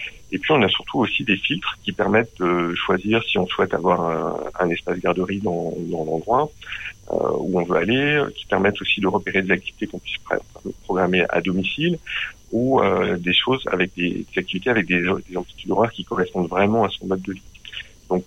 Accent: French